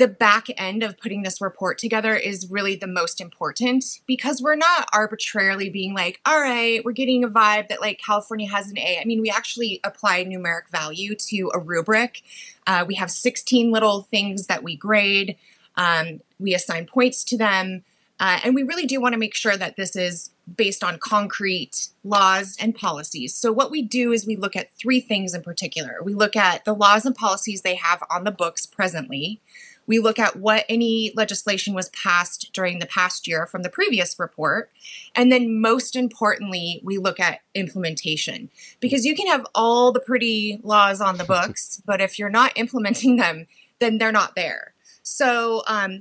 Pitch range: 185-230 Hz